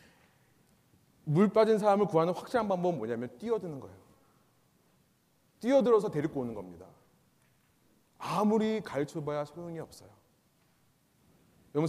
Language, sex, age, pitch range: Korean, male, 30-49, 140-220 Hz